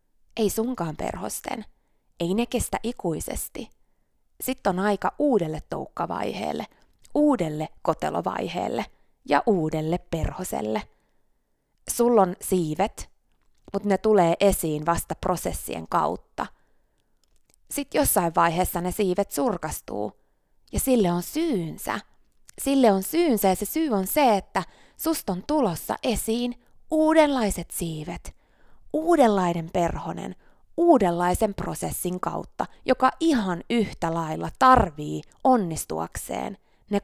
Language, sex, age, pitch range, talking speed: Finnish, female, 20-39, 170-245 Hz, 100 wpm